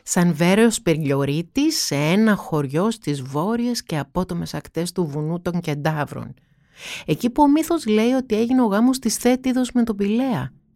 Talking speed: 160 wpm